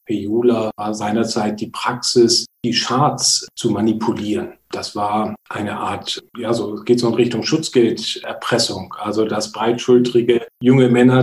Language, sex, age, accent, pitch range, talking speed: German, male, 40-59, German, 110-125 Hz, 135 wpm